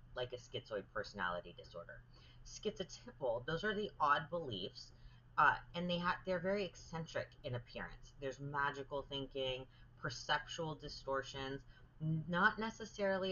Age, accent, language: 30-49, American, English